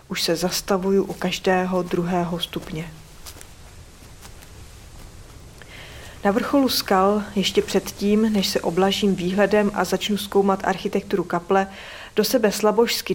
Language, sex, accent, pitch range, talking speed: Czech, female, native, 180-220 Hz, 110 wpm